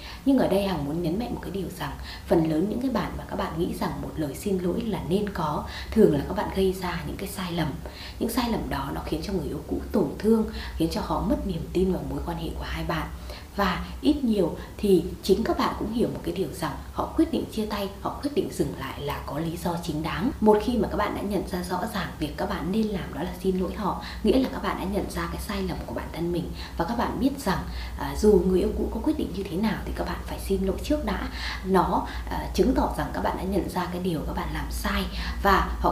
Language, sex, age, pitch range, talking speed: Vietnamese, female, 20-39, 170-210 Hz, 275 wpm